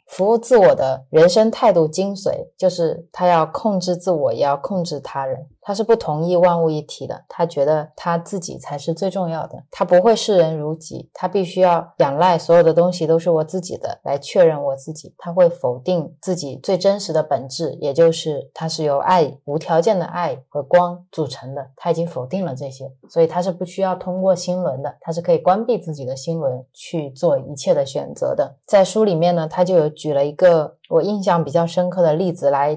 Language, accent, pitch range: Chinese, native, 155-185 Hz